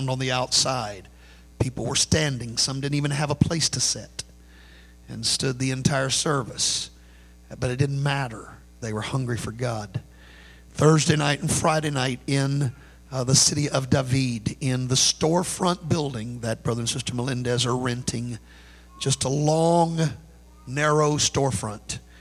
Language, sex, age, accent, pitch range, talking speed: English, male, 50-69, American, 110-140 Hz, 150 wpm